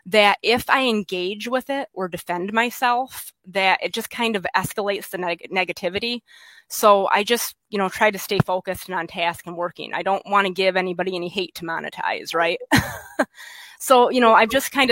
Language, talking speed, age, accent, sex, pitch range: English, 195 wpm, 20-39, American, female, 175-225 Hz